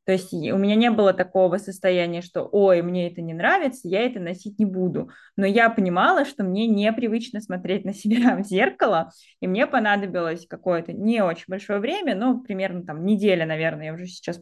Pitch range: 175-220 Hz